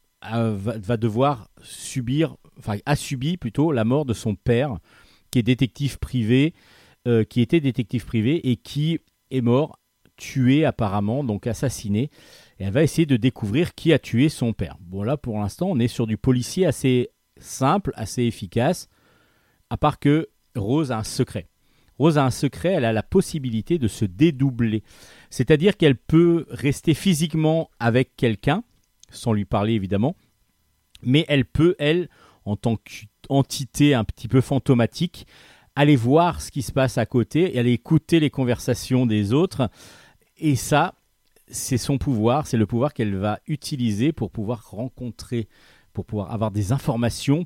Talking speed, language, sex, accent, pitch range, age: 160 wpm, French, male, French, 110-145 Hz, 40-59